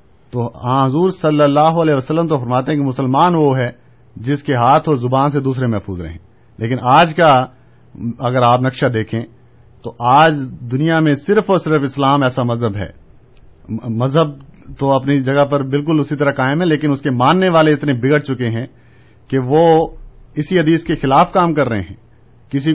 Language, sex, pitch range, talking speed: Urdu, male, 120-145 Hz, 185 wpm